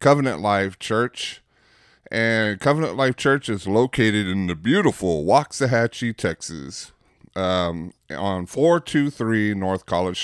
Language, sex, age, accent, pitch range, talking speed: English, male, 30-49, American, 95-115 Hz, 110 wpm